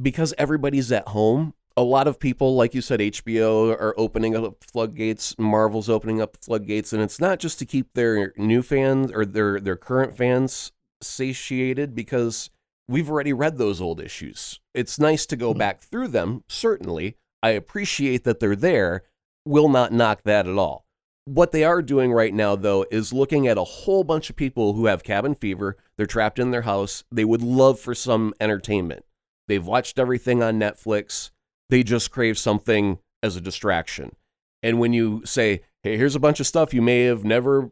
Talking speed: 185 wpm